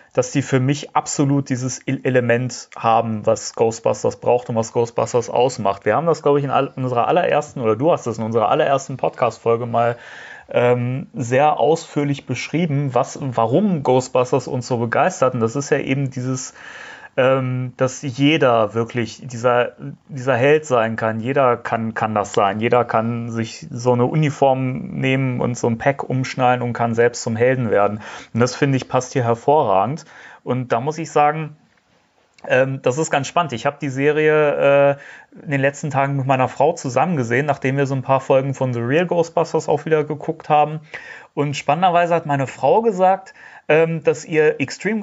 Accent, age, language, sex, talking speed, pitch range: German, 30-49, German, male, 180 wpm, 125-150 Hz